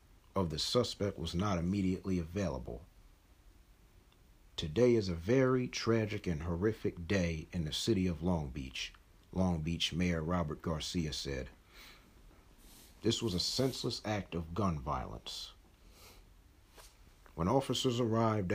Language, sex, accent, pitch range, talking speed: English, male, American, 85-110 Hz, 125 wpm